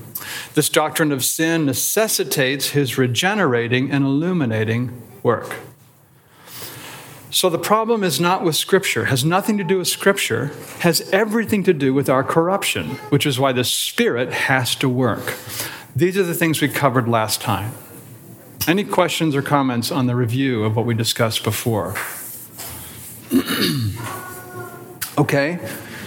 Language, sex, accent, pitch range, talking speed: English, male, American, 125-170 Hz, 140 wpm